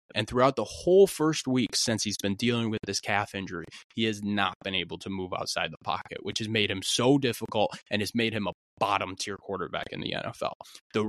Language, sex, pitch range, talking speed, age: English, male, 105-130 Hz, 225 wpm, 20-39